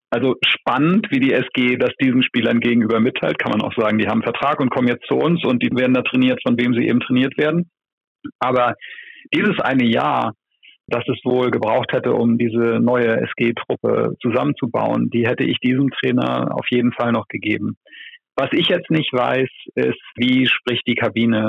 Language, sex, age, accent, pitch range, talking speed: German, male, 40-59, German, 115-130 Hz, 190 wpm